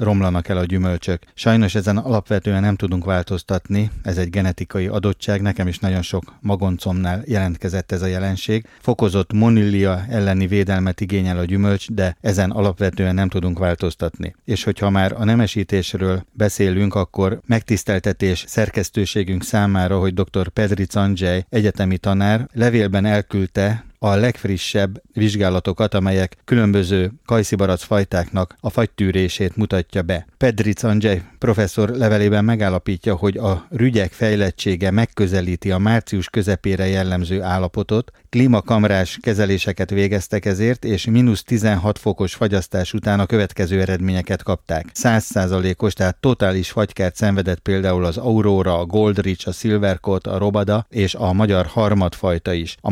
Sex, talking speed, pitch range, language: male, 130 wpm, 95-110 Hz, Hungarian